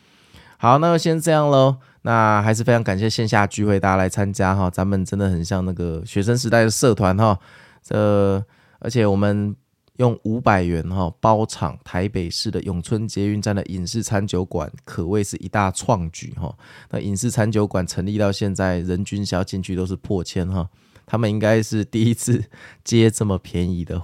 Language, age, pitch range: Chinese, 20-39, 90-110 Hz